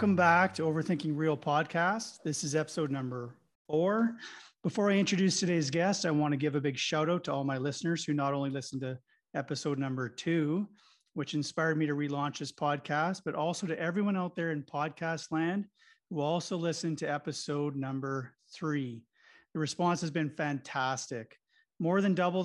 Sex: male